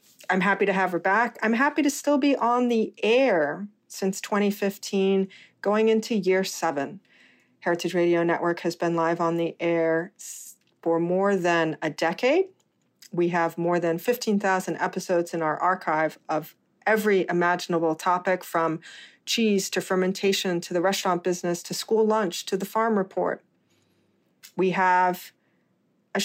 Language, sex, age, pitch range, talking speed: English, female, 40-59, 175-205 Hz, 150 wpm